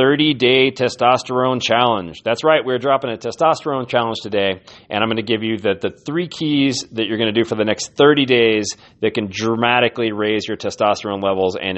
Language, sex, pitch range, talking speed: English, male, 105-130 Hz, 205 wpm